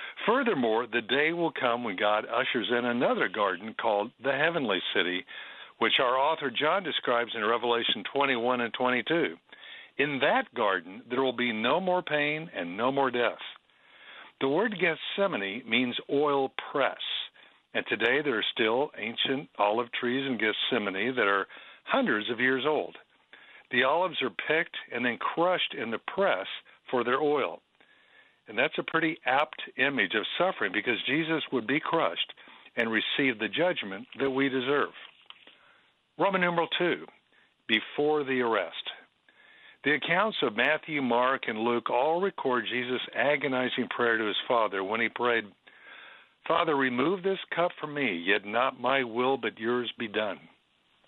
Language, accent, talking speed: English, American, 155 wpm